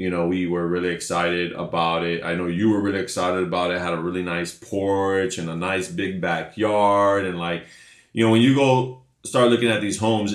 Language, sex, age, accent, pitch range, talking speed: English, male, 20-39, American, 90-110 Hz, 220 wpm